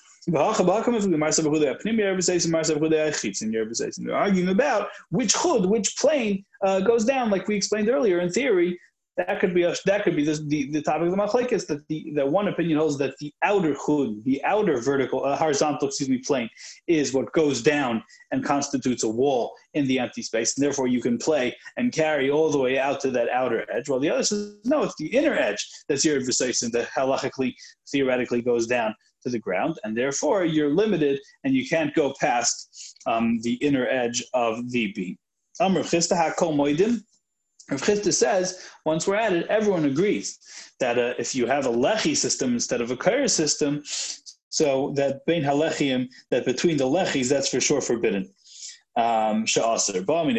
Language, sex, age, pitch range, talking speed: English, male, 20-39, 135-185 Hz, 175 wpm